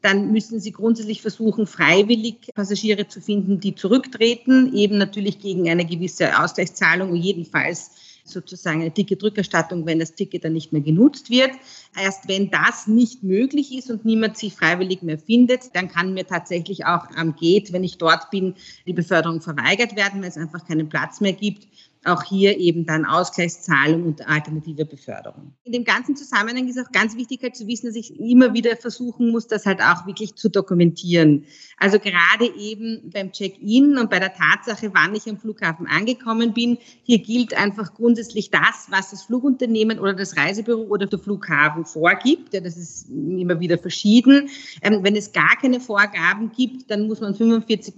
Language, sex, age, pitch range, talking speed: German, female, 40-59, 175-225 Hz, 175 wpm